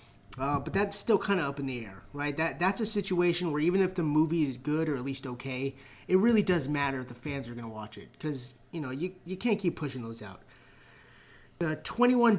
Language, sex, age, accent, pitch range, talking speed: English, male, 30-49, American, 135-175 Hz, 240 wpm